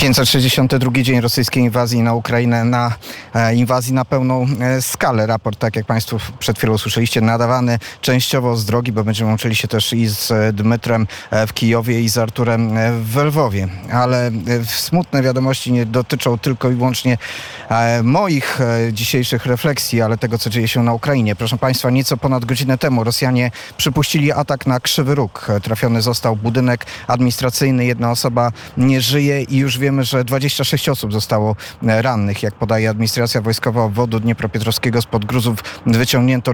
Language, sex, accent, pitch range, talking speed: Polish, male, native, 115-130 Hz, 150 wpm